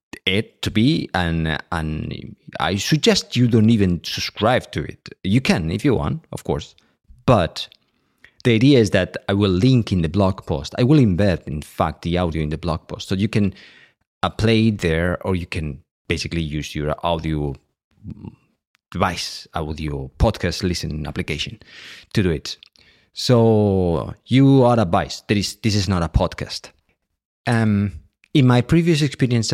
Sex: male